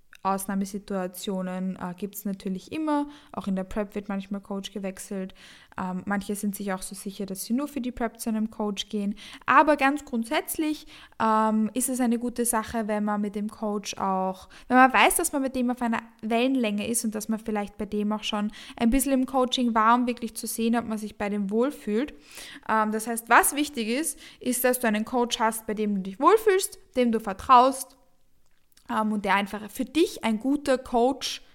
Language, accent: German, German